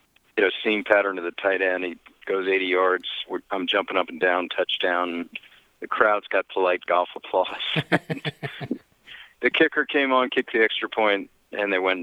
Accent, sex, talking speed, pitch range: American, male, 175 wpm, 95-140 Hz